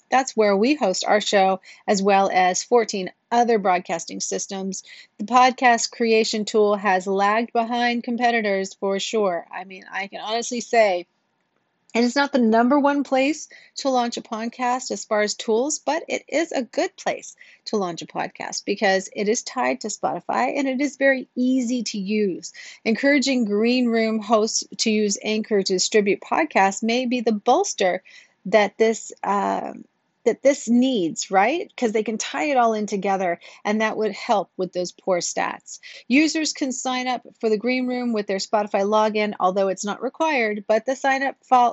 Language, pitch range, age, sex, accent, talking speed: English, 200-250 Hz, 40-59, female, American, 180 wpm